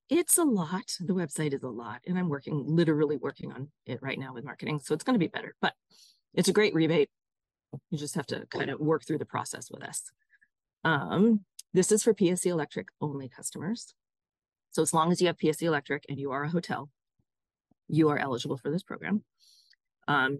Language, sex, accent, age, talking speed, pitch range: English, female, American, 40-59, 205 wpm, 140-185 Hz